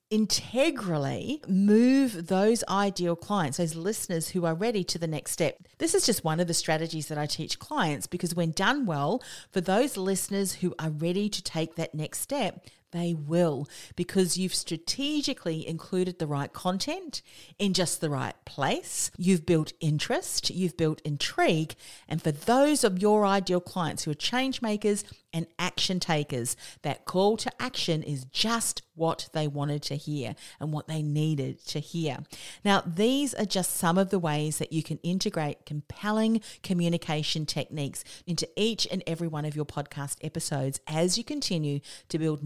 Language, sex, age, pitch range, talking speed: English, female, 40-59, 155-195 Hz, 170 wpm